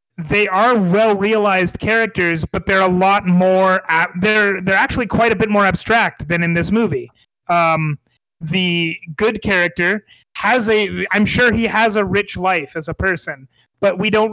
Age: 30-49